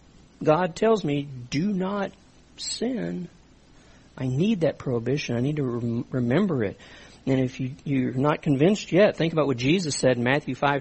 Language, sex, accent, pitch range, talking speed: English, male, American, 140-205 Hz, 165 wpm